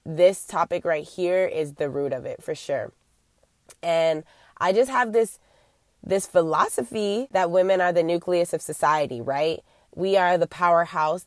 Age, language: 20-39, English